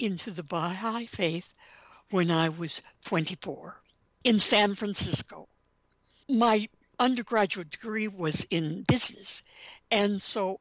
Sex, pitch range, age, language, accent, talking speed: female, 175-225 Hz, 60-79, English, American, 105 wpm